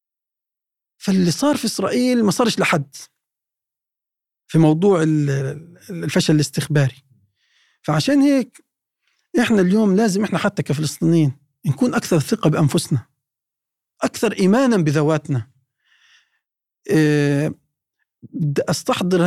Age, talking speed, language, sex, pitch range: 40-59, 85 wpm, Arabic, male, 145-190 Hz